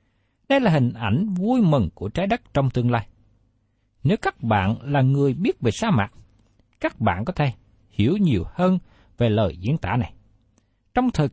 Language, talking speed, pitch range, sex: Vietnamese, 185 wpm, 105-170 Hz, male